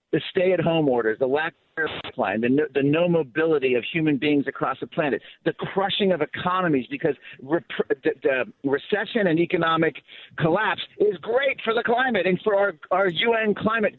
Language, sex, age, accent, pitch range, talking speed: English, male, 50-69, American, 145-195 Hz, 175 wpm